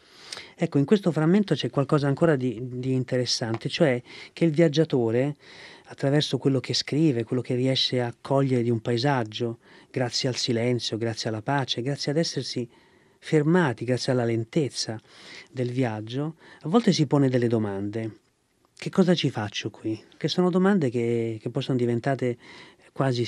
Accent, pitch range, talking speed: native, 120-150 Hz, 155 wpm